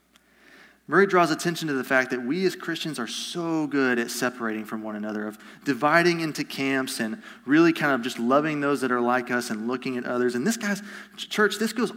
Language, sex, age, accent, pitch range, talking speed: English, male, 30-49, American, 125-165 Hz, 215 wpm